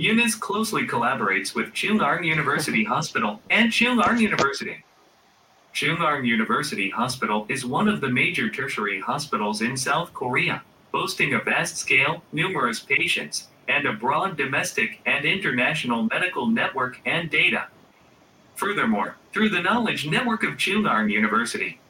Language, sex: Thai, male